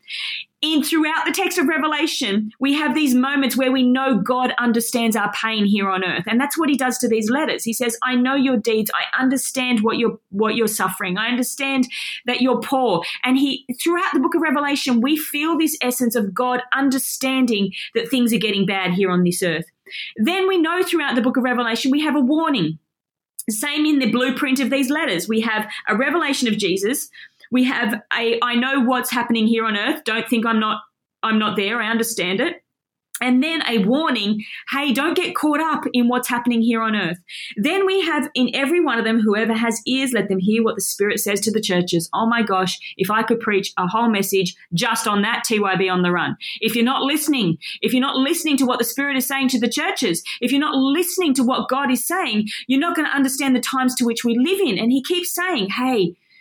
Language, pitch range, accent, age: English, 220-280 Hz, Australian, 30-49